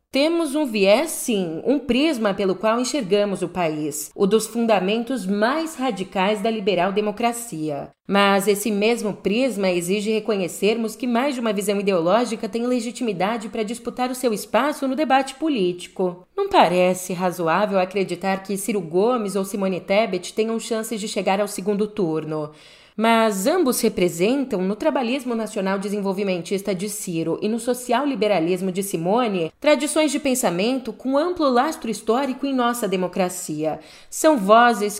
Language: Portuguese